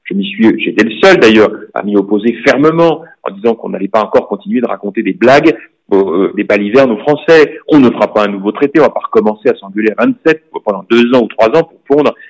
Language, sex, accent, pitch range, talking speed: French, male, French, 115-190 Hz, 230 wpm